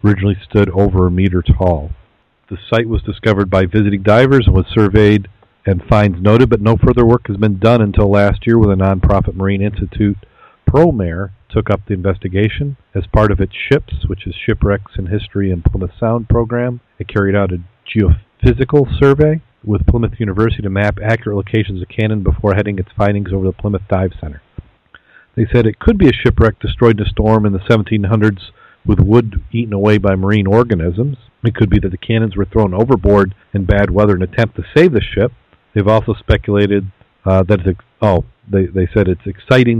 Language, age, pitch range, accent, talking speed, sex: English, 40-59, 95-110 Hz, American, 190 wpm, male